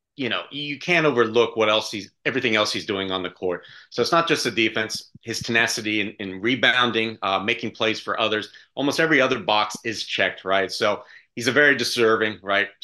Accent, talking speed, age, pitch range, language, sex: American, 205 wpm, 30-49, 105-130 Hz, English, male